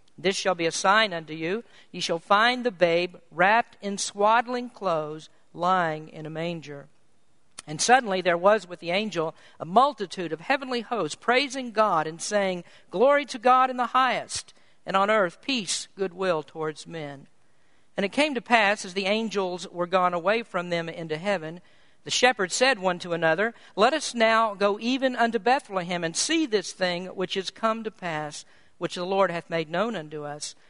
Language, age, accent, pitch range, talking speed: English, 50-69, American, 170-225 Hz, 185 wpm